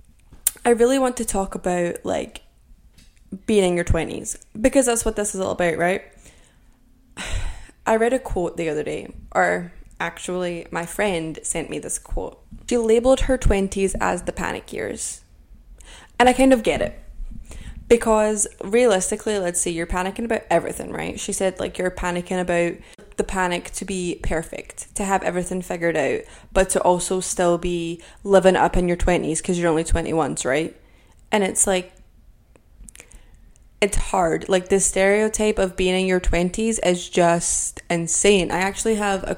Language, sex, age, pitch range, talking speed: English, female, 20-39, 175-215 Hz, 165 wpm